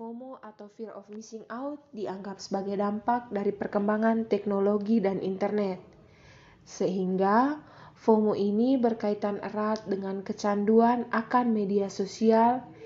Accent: native